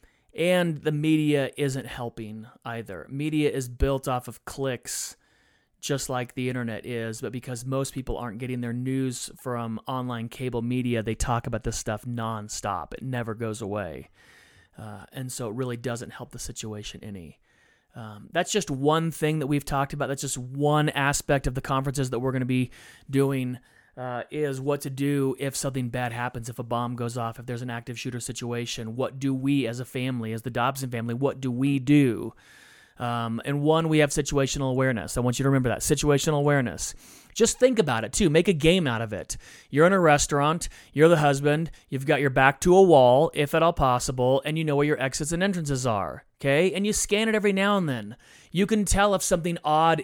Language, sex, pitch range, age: English, male, 120-150 Hz, 30-49